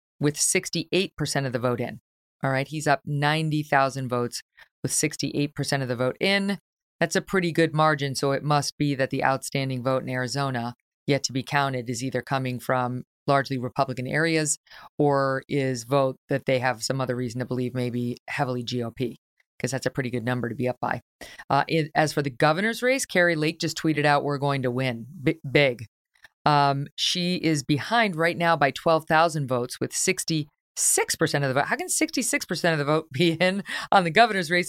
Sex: female